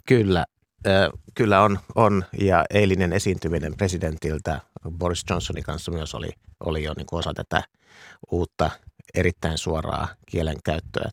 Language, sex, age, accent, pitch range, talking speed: Finnish, male, 50-69, native, 80-110 Hz, 125 wpm